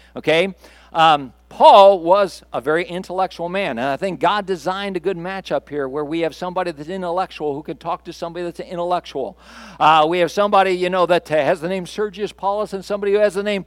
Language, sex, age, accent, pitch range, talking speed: English, male, 50-69, American, 165-210 Hz, 210 wpm